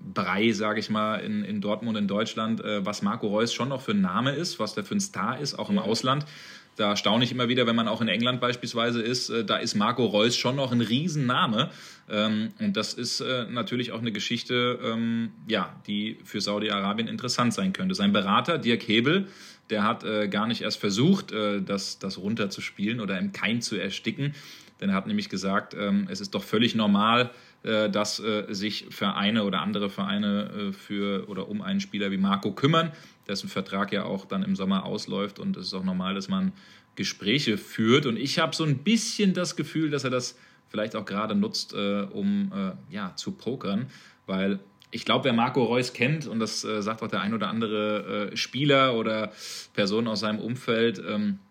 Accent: German